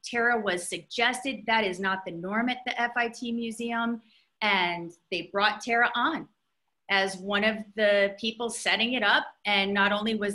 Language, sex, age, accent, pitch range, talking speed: English, female, 40-59, American, 190-235 Hz, 170 wpm